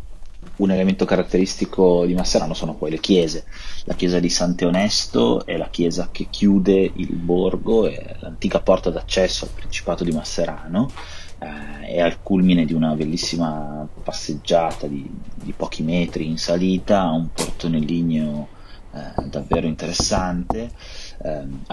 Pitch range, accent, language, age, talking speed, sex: 75-90 Hz, native, Italian, 30-49, 135 wpm, male